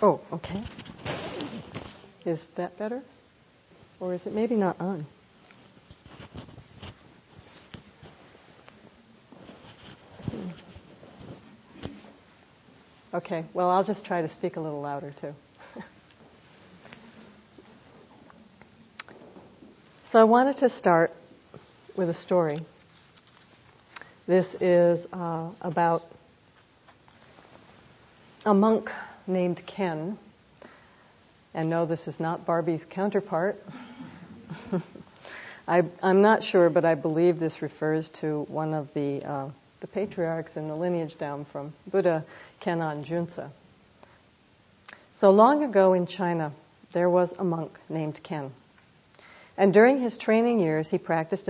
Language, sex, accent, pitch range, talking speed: English, female, American, 155-195 Hz, 100 wpm